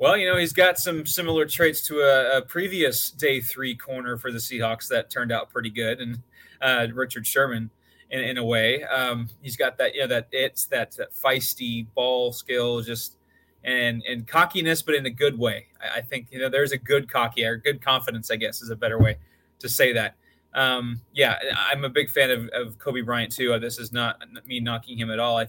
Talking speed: 220 wpm